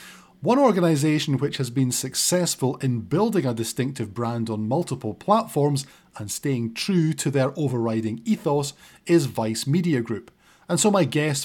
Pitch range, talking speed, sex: 120-175 Hz, 150 wpm, male